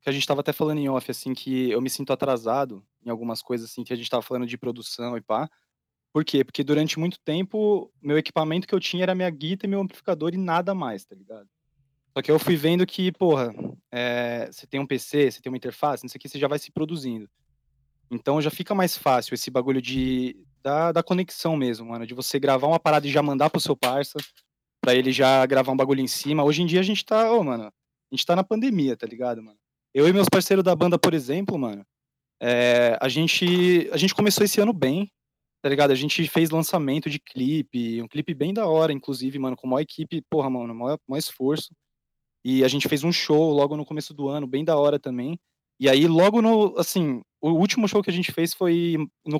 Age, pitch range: 20-39, 130-170 Hz